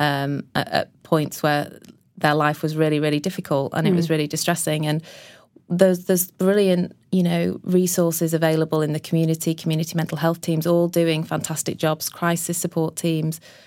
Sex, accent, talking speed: female, British, 165 wpm